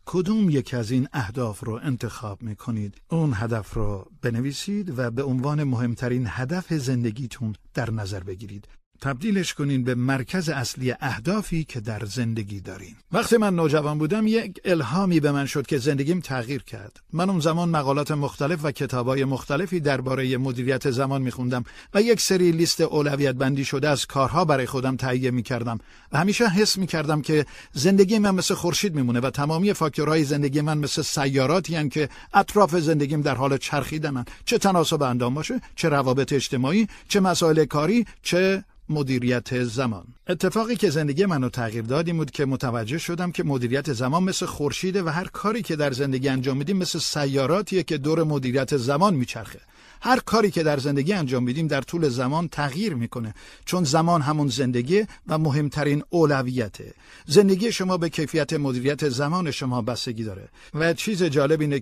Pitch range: 125-170 Hz